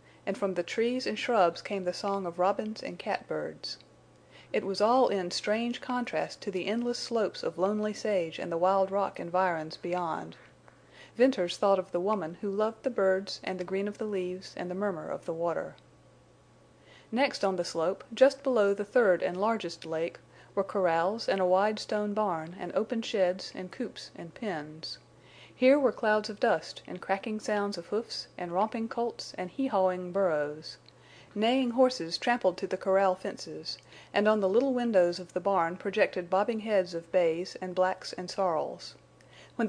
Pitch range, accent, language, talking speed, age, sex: 180-215 Hz, American, English, 180 wpm, 40-59, female